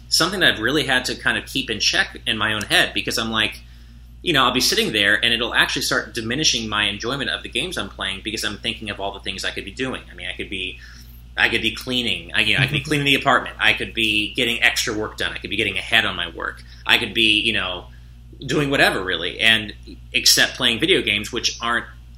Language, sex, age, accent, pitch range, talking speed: English, male, 30-49, American, 85-120 Hz, 255 wpm